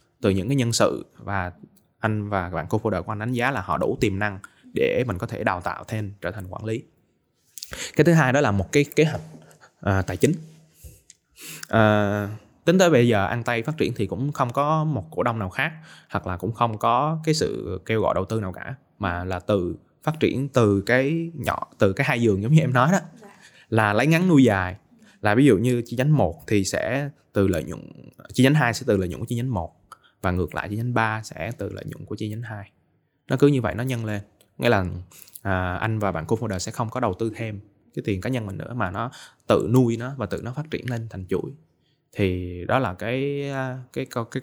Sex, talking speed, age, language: male, 240 wpm, 20-39, Vietnamese